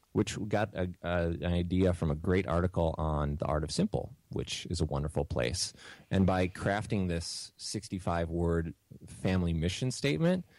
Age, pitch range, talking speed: 30-49, 80-95 Hz, 145 wpm